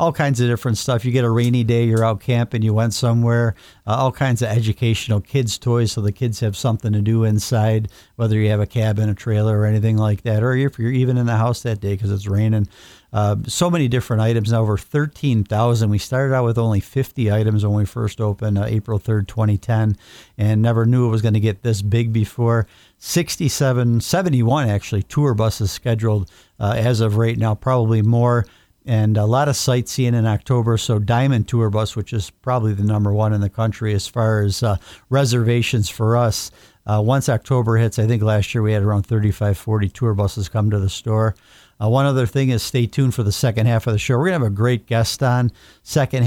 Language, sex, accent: Japanese, male, American